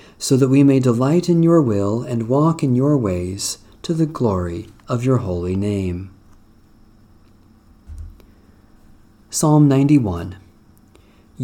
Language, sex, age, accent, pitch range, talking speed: English, male, 40-59, American, 105-145 Hz, 115 wpm